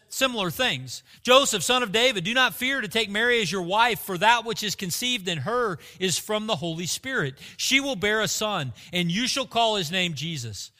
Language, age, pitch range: English, 40-59, 140-225 Hz